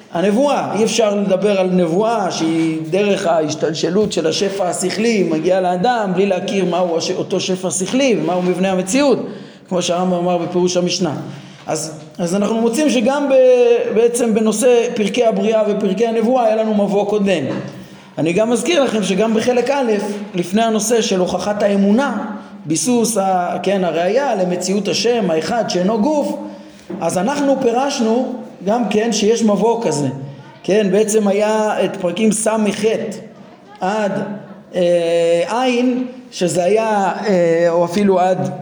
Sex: male